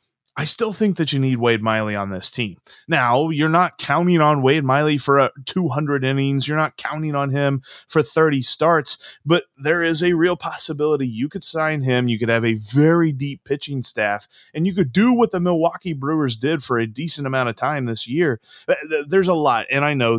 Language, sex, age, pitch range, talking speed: English, male, 30-49, 120-175 Hz, 210 wpm